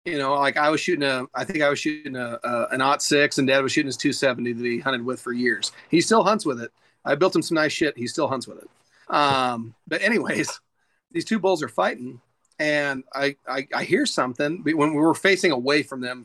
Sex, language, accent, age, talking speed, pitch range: male, English, American, 40-59, 250 wpm, 135-160 Hz